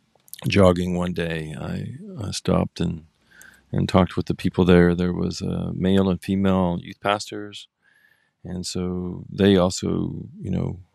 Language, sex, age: English, male, 40-59